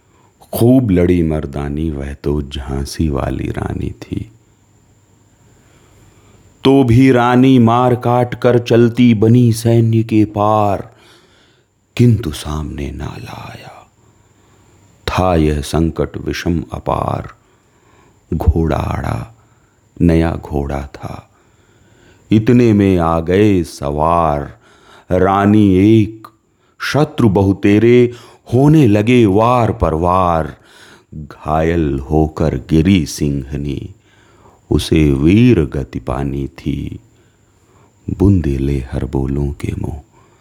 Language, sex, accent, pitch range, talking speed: Hindi, male, native, 80-110 Hz, 90 wpm